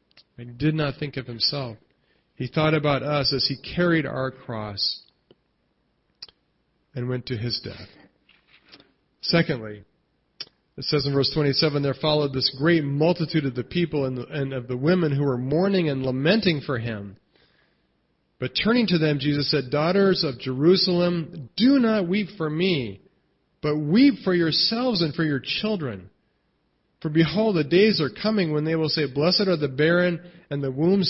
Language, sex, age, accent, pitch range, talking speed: English, male, 40-59, American, 130-165 Hz, 160 wpm